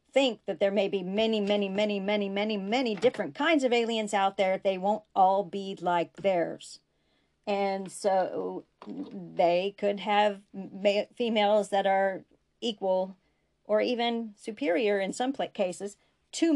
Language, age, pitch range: English, 40-59, 195-255 Hz